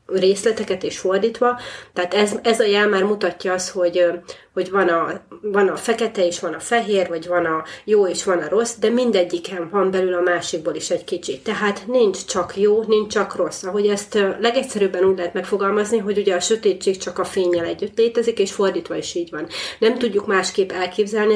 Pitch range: 185-220 Hz